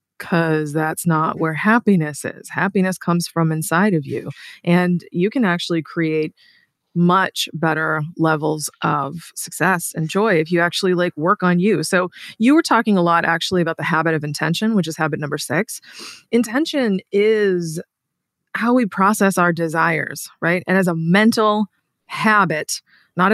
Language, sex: English, female